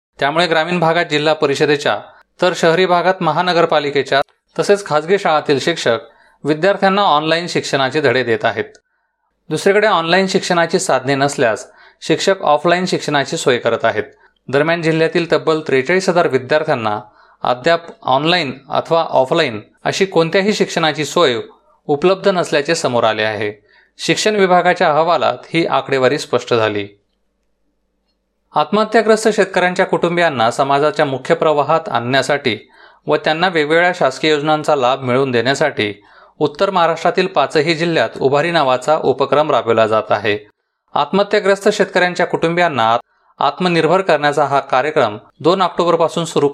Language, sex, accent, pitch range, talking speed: Marathi, male, native, 130-175 Hz, 115 wpm